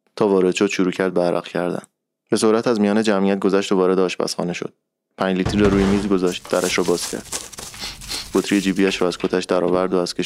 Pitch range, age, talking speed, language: 95-105 Hz, 20-39, 215 wpm, Persian